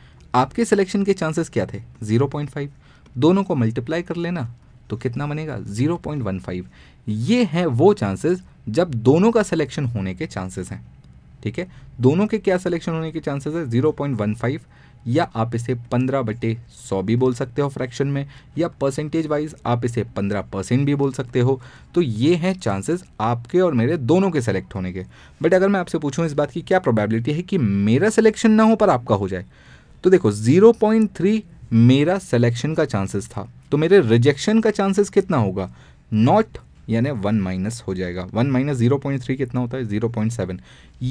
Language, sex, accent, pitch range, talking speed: Hindi, male, native, 110-165 Hz, 180 wpm